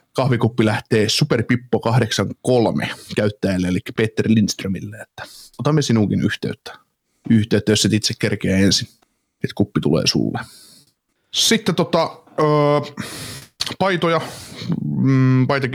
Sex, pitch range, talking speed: male, 105-125 Hz, 105 wpm